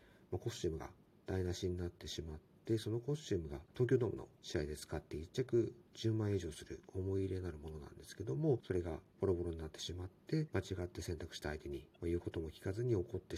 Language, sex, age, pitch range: Japanese, male, 50-69, 85-110 Hz